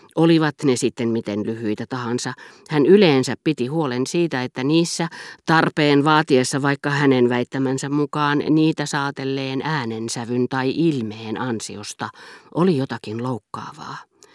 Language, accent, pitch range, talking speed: Finnish, native, 125-160 Hz, 115 wpm